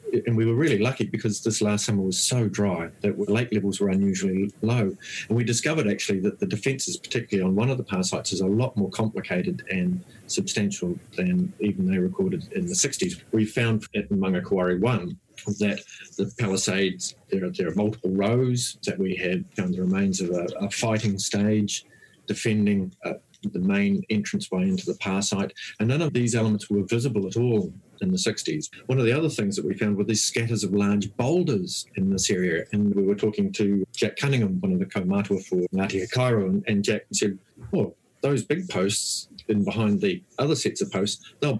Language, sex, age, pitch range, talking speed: English, male, 40-59, 100-140 Hz, 200 wpm